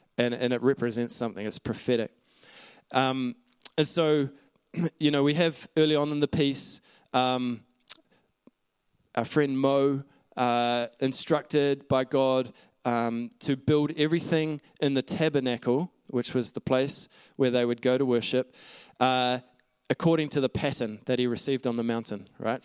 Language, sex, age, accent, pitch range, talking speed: English, male, 20-39, Australian, 125-150 Hz, 150 wpm